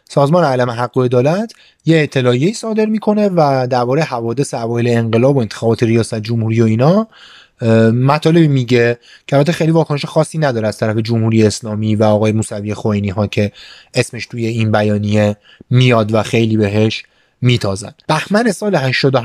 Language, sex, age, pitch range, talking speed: Persian, male, 30-49, 115-170 Hz, 150 wpm